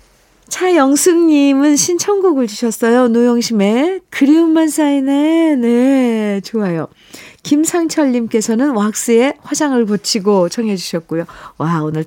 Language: Korean